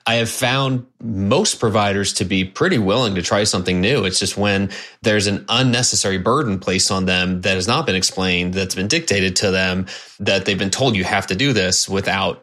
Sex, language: male, English